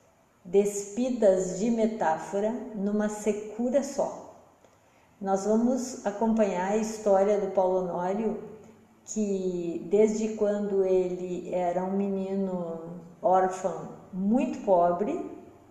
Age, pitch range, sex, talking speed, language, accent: 40-59, 185-215 Hz, female, 90 wpm, Portuguese, Brazilian